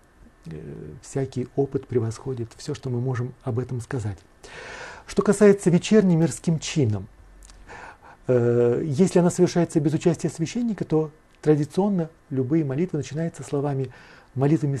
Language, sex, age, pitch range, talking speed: Russian, male, 40-59, 125-155 Hz, 120 wpm